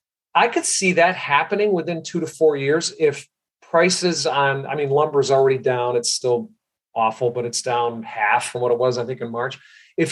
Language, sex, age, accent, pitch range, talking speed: English, male, 40-59, American, 130-175 Hz, 210 wpm